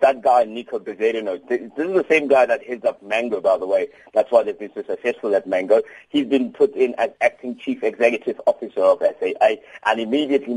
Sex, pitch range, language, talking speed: male, 120-155 Hz, English, 210 wpm